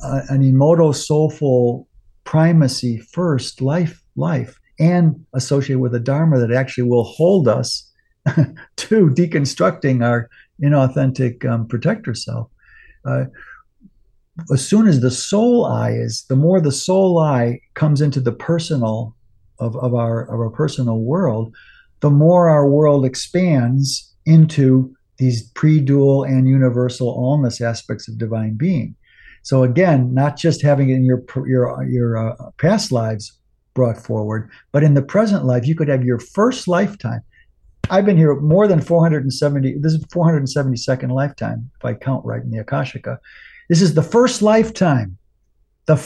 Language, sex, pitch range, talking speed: English, male, 120-155 Hz, 140 wpm